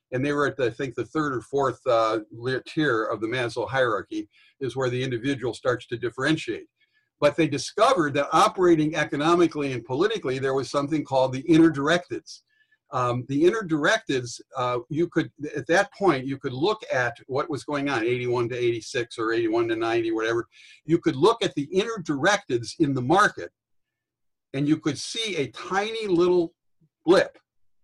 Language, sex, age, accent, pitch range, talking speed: English, male, 60-79, American, 125-170 Hz, 180 wpm